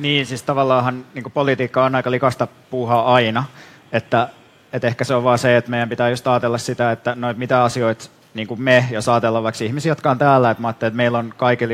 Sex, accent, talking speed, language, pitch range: male, native, 210 wpm, Finnish, 115-130 Hz